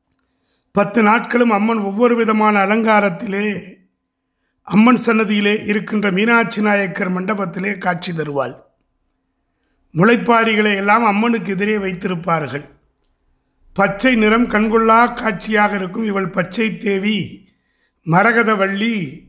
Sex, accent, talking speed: male, native, 85 wpm